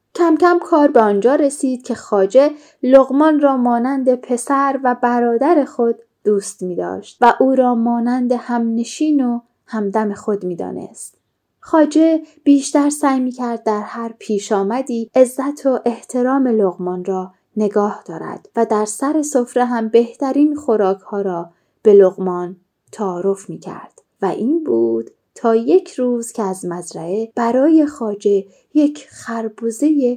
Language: Persian